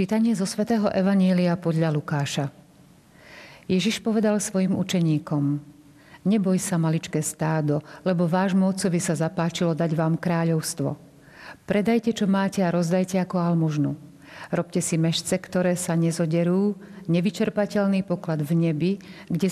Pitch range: 165-190 Hz